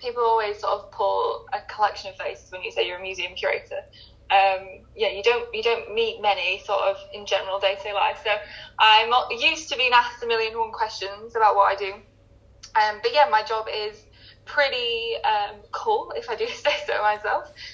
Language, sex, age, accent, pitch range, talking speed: English, female, 10-29, British, 200-315 Hz, 195 wpm